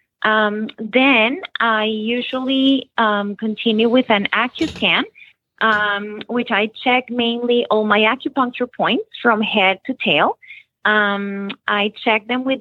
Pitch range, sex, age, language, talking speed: 200-235 Hz, female, 30-49, English, 130 wpm